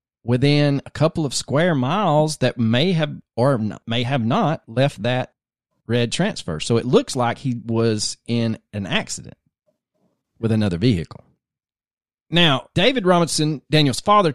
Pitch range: 115-150 Hz